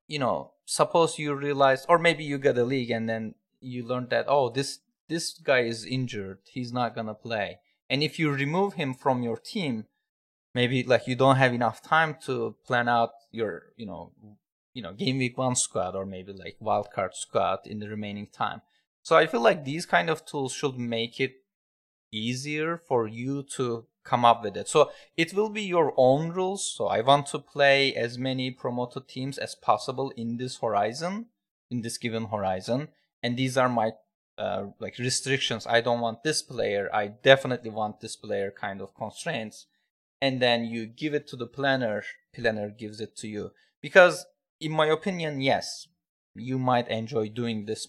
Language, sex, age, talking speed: English, male, 20-39, 190 wpm